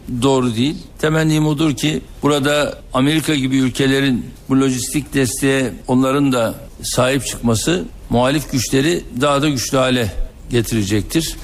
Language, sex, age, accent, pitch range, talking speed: Turkish, male, 60-79, native, 125-145 Hz, 120 wpm